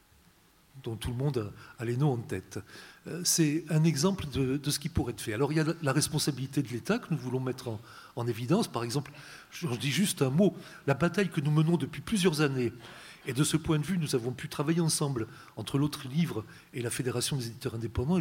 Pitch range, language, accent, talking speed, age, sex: 135-185 Hz, French, French, 225 wpm, 40-59, male